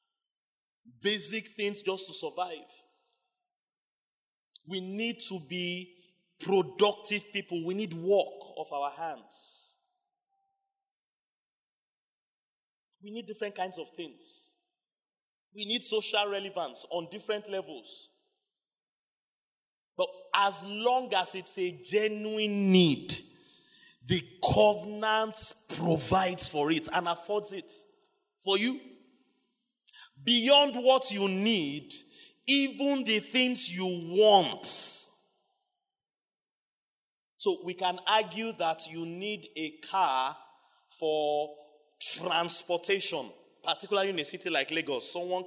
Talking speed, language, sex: 100 wpm, English, male